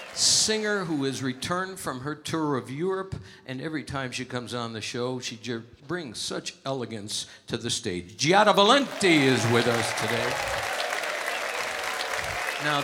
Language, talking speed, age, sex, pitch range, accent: English, 150 wpm, 60-79, male, 120-175 Hz, American